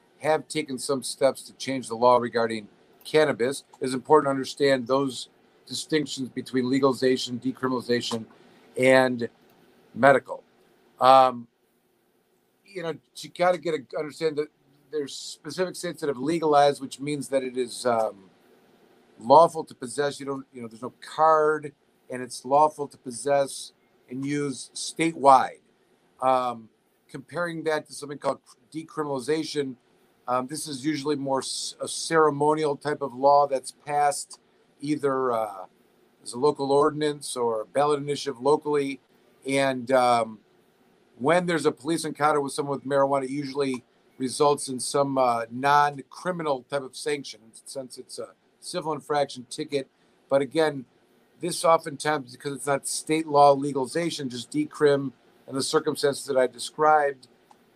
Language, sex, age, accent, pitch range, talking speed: English, male, 50-69, American, 130-150 Hz, 140 wpm